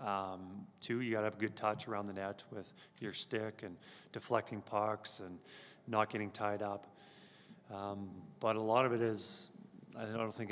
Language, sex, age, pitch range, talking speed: English, male, 30-49, 105-125 Hz, 185 wpm